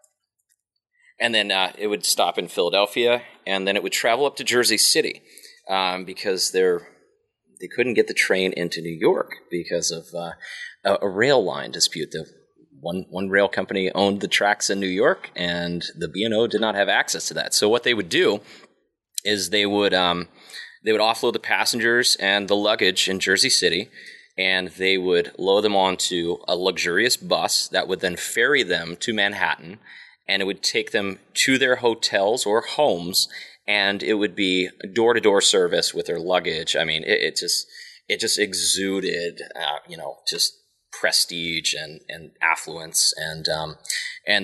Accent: American